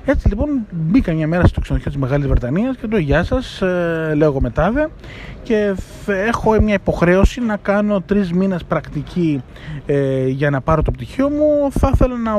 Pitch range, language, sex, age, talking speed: 145-235 Hz, Greek, male, 20-39, 175 wpm